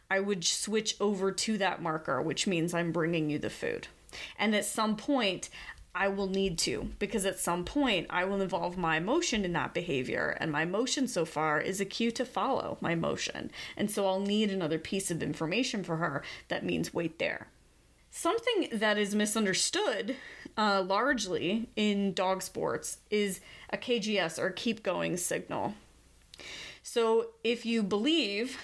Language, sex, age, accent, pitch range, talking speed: English, female, 30-49, American, 185-230 Hz, 170 wpm